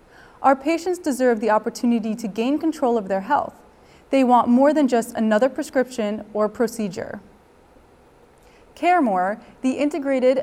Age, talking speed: 20-39, 130 wpm